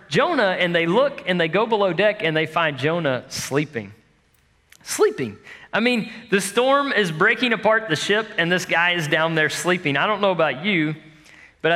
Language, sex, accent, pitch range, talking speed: English, male, American, 145-195 Hz, 190 wpm